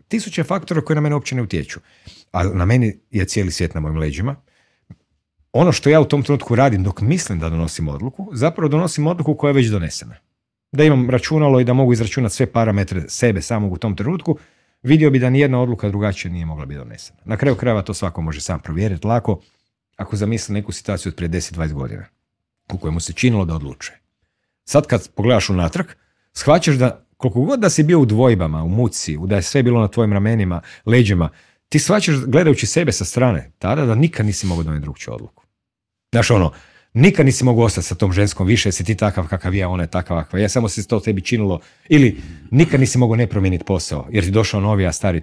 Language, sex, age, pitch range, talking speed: Croatian, male, 40-59, 90-130 Hz, 205 wpm